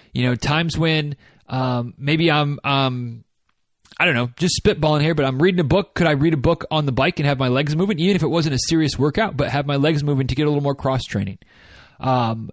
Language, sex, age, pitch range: English, male, 30-49, 130-160 Hz